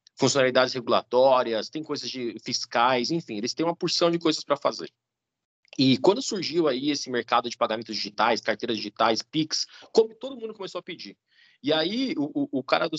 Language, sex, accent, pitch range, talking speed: Portuguese, male, Brazilian, 125-185 Hz, 180 wpm